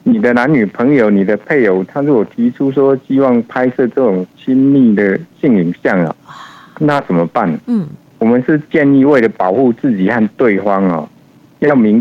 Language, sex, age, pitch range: Chinese, male, 60-79, 110-155 Hz